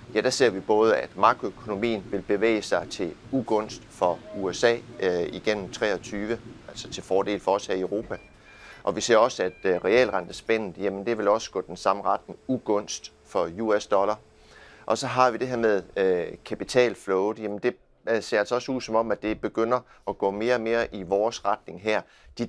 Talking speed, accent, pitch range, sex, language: 195 wpm, native, 100-115 Hz, male, Danish